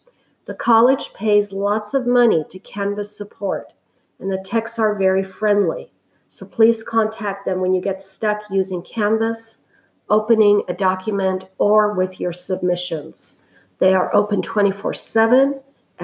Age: 50-69